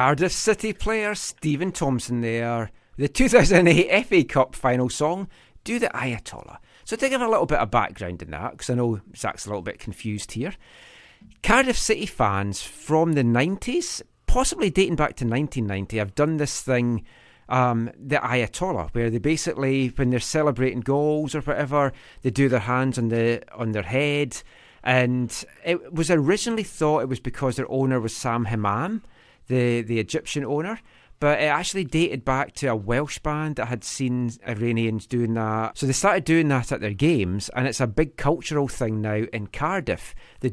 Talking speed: 175 wpm